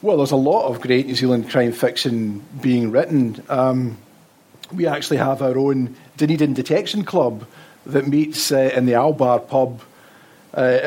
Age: 40-59